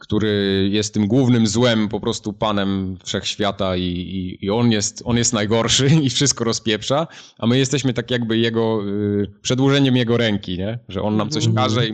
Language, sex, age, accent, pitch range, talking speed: Polish, male, 20-39, native, 100-115 Hz, 180 wpm